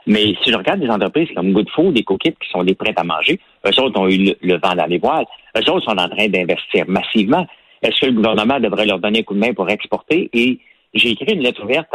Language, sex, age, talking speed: French, male, 60-79, 255 wpm